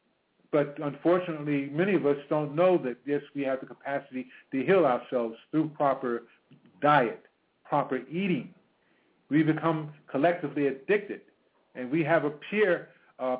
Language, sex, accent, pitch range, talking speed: English, male, American, 130-155 Hz, 140 wpm